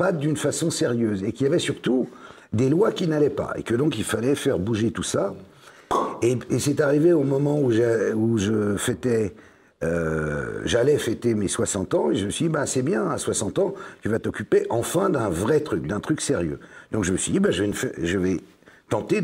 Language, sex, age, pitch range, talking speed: French, male, 50-69, 105-135 Hz, 225 wpm